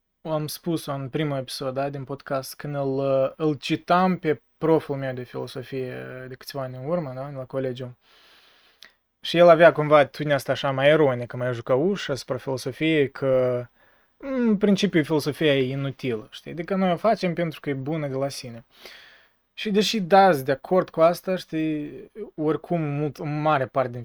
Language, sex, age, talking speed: Romanian, male, 20-39, 180 wpm